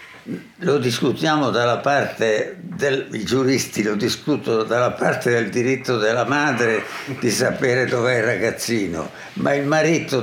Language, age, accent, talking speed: Italian, 60-79, native, 130 wpm